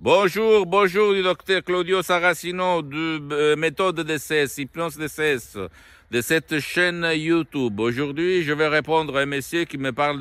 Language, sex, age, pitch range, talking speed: Italian, male, 60-79, 115-145 Hz, 140 wpm